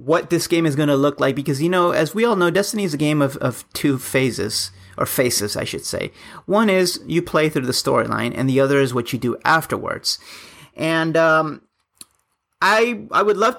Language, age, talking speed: English, 30-49, 215 wpm